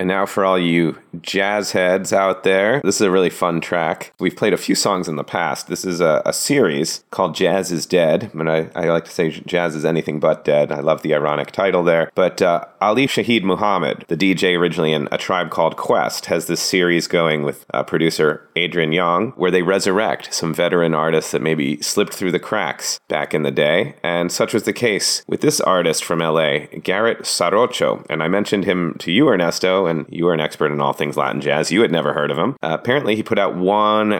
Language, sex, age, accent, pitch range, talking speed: English, male, 30-49, American, 80-95 Hz, 225 wpm